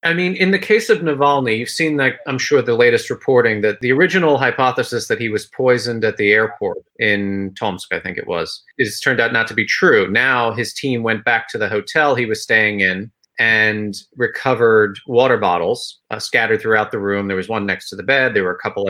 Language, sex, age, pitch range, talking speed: English, male, 30-49, 105-155 Hz, 220 wpm